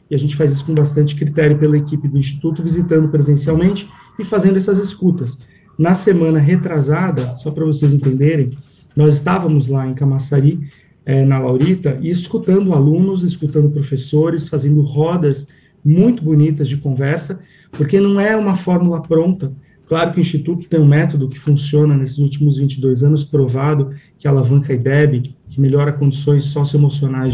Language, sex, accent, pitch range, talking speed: Portuguese, male, Brazilian, 140-160 Hz, 155 wpm